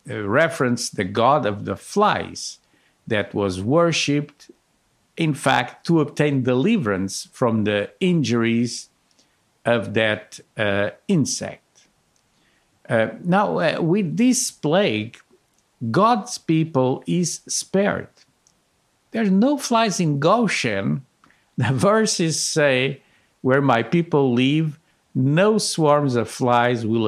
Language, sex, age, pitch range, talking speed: English, male, 50-69, 115-165 Hz, 110 wpm